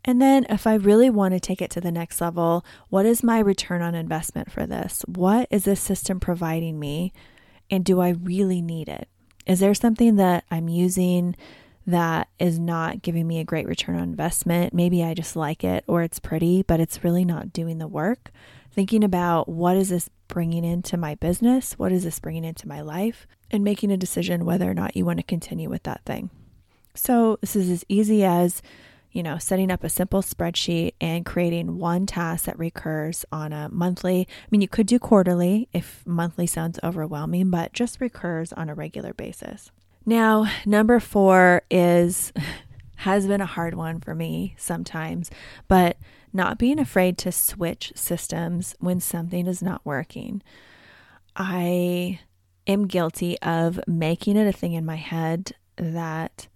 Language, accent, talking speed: English, American, 180 wpm